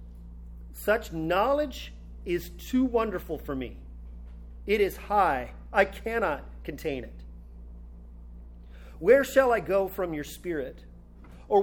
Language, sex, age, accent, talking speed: English, male, 40-59, American, 115 wpm